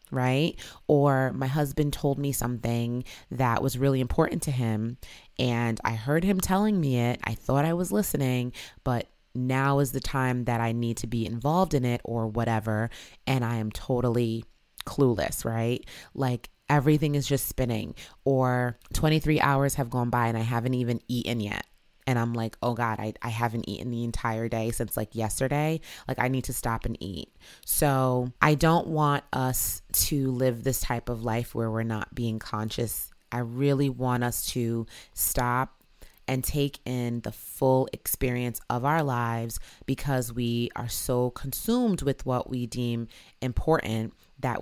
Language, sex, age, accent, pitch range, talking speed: English, female, 30-49, American, 115-135 Hz, 170 wpm